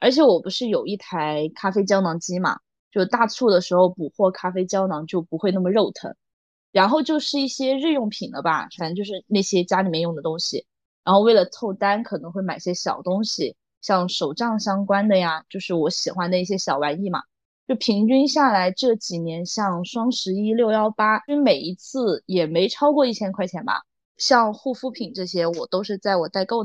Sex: female